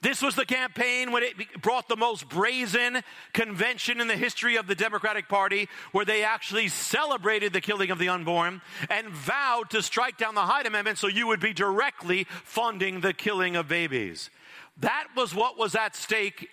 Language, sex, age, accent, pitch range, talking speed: English, male, 50-69, American, 190-235 Hz, 185 wpm